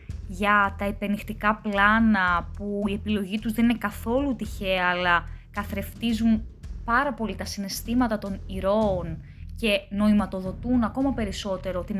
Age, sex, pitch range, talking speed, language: 20-39, female, 180-240 Hz, 125 wpm, Greek